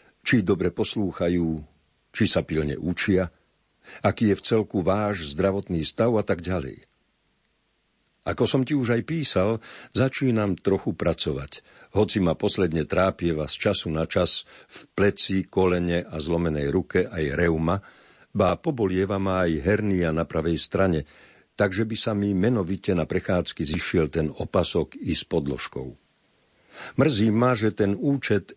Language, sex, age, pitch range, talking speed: Slovak, male, 50-69, 85-105 Hz, 145 wpm